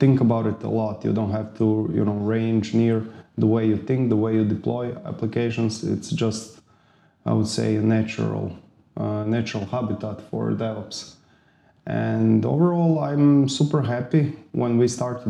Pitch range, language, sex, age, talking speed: 110-130 Hz, English, male, 20-39, 165 wpm